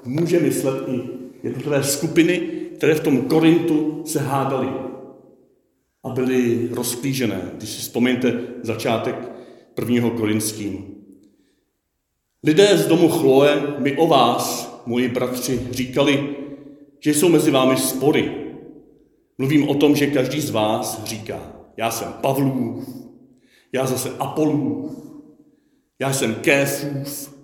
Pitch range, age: 130-165 Hz, 50-69